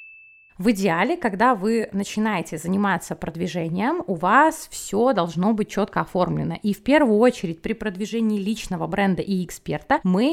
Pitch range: 190-245 Hz